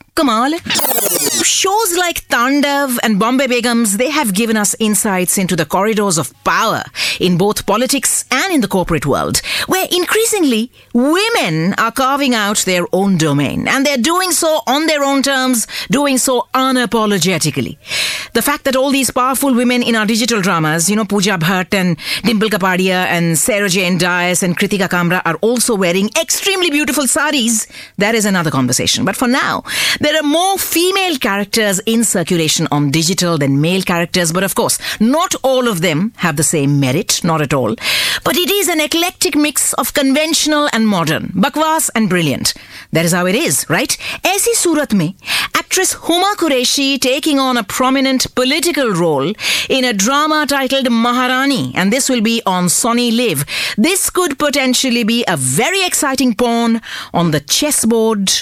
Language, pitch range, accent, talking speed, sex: English, 185-285 Hz, Indian, 165 wpm, female